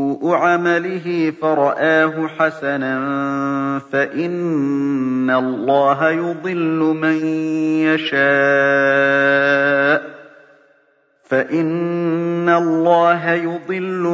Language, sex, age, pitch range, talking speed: Arabic, male, 40-59, 140-170 Hz, 45 wpm